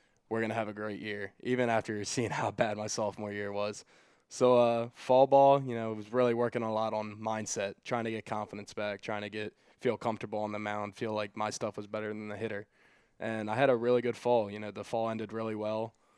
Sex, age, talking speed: male, 20-39, 240 wpm